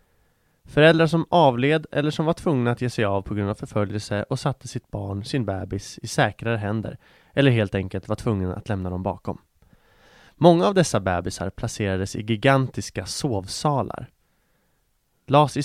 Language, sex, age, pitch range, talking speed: English, male, 30-49, 100-135 Hz, 165 wpm